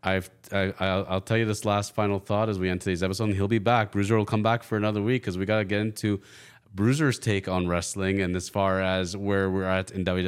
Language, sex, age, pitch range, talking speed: English, male, 30-49, 100-130 Hz, 245 wpm